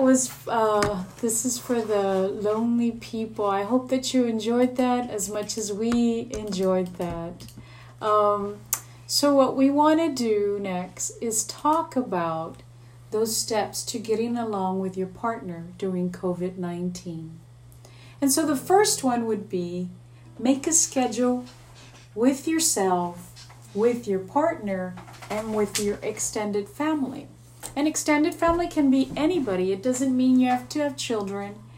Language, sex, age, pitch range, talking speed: English, female, 40-59, 180-260 Hz, 140 wpm